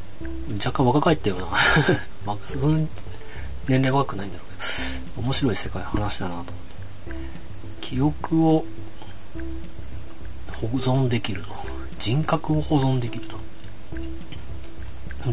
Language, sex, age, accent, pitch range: Japanese, male, 40-59, native, 90-115 Hz